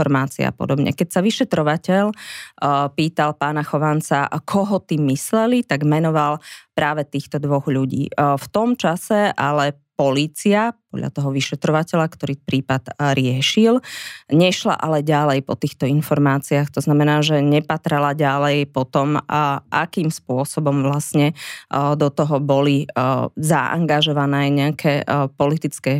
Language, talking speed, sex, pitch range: Slovak, 120 wpm, female, 140-160 Hz